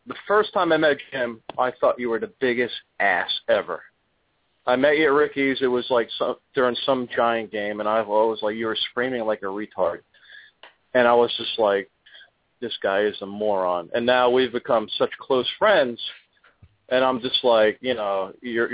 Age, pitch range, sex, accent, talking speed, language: 40-59, 105-125 Hz, male, American, 190 wpm, English